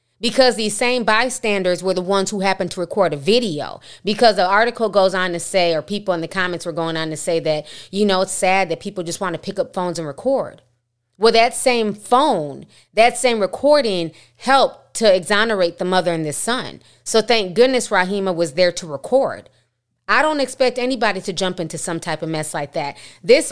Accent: American